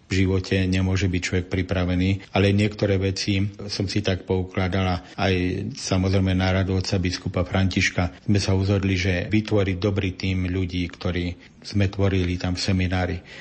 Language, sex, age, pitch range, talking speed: Slovak, male, 50-69, 95-100 Hz, 145 wpm